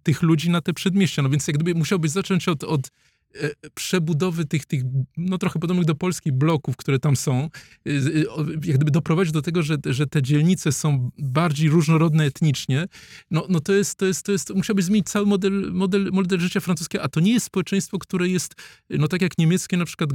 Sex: male